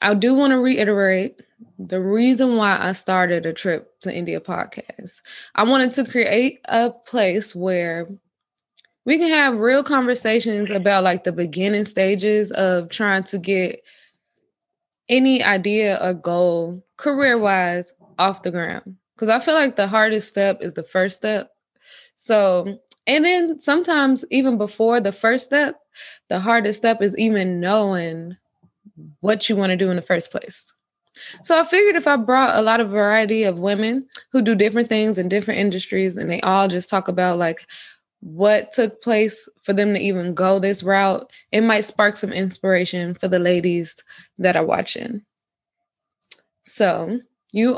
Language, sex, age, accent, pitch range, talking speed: English, female, 20-39, American, 190-245 Hz, 160 wpm